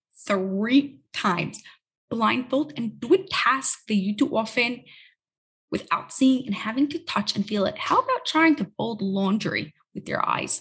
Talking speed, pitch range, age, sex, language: 165 wpm, 210-300 Hz, 20-39, female, English